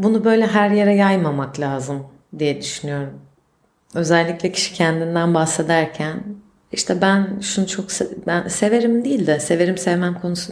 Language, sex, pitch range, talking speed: Turkish, female, 155-195 Hz, 135 wpm